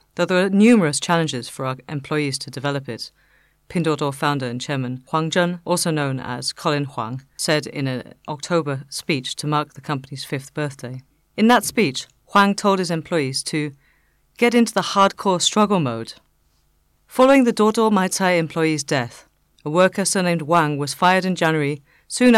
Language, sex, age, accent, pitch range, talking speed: English, female, 40-59, British, 135-180 Hz, 165 wpm